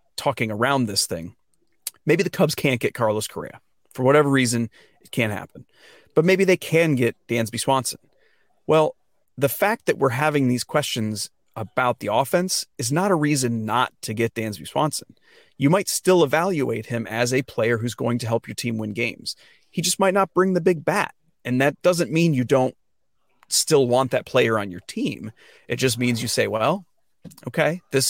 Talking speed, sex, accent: 190 wpm, male, American